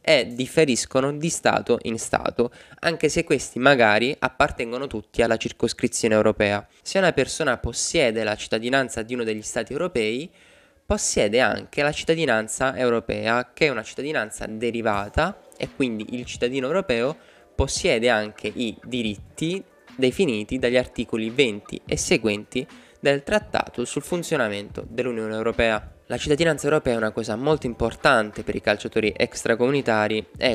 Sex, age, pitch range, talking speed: male, 20-39, 105-130 Hz, 140 wpm